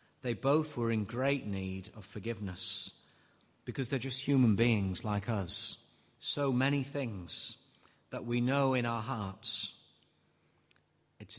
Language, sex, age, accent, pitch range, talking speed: English, male, 40-59, British, 100-130 Hz, 130 wpm